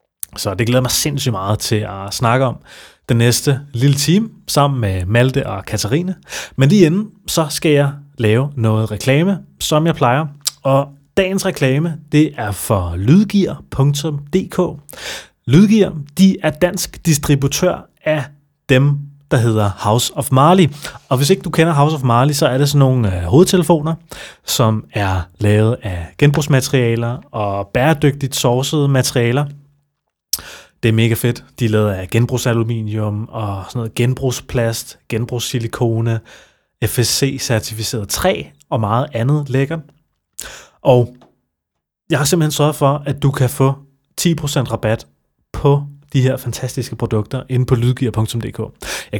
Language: Danish